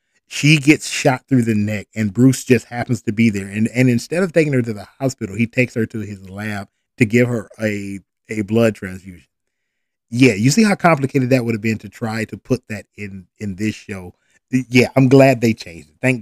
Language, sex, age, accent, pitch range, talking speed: English, male, 20-39, American, 100-120 Hz, 220 wpm